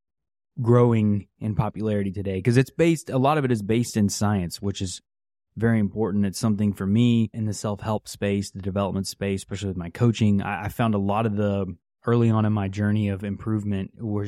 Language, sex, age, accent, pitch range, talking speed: English, male, 20-39, American, 100-120 Hz, 205 wpm